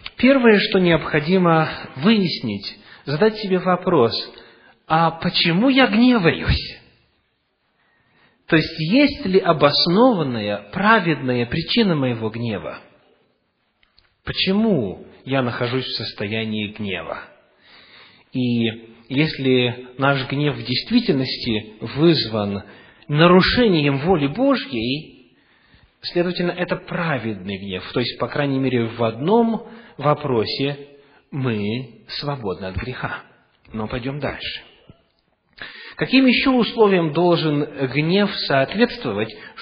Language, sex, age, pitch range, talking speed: English, male, 40-59, 120-180 Hz, 90 wpm